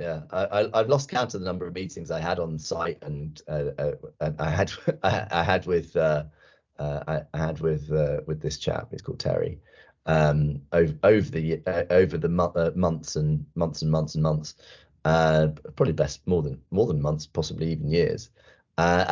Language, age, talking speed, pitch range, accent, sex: English, 30-49, 200 wpm, 75-105 Hz, British, male